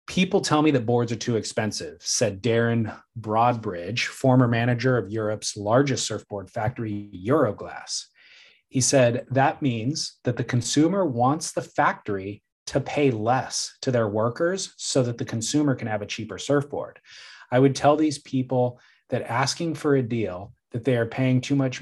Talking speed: 165 wpm